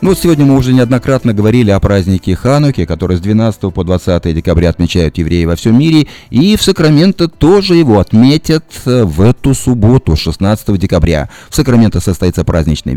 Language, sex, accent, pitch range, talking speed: Russian, male, native, 90-135 Hz, 160 wpm